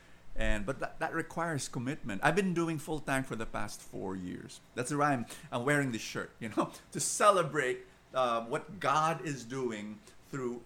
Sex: male